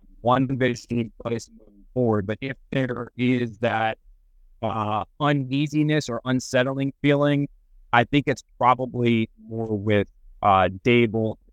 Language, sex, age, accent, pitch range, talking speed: English, male, 30-49, American, 105-125 Hz, 120 wpm